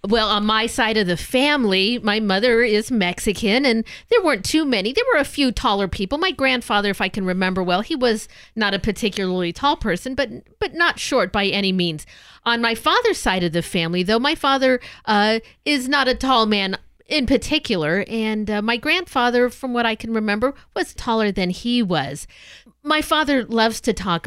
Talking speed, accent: 200 wpm, American